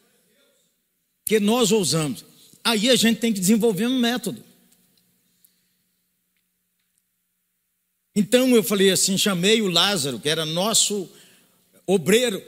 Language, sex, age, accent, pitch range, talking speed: Portuguese, male, 50-69, Brazilian, 150-195 Hz, 105 wpm